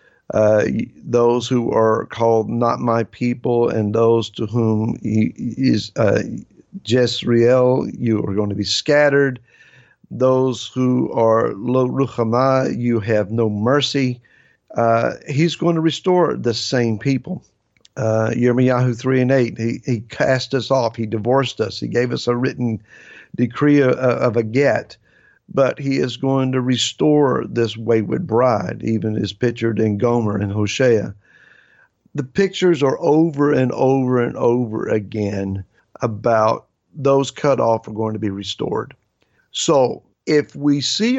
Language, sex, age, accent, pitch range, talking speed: English, male, 50-69, American, 115-135 Hz, 145 wpm